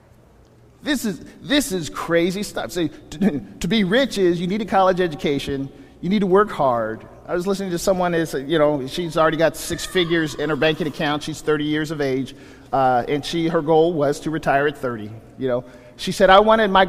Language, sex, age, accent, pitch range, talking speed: English, male, 50-69, American, 120-180 Hz, 215 wpm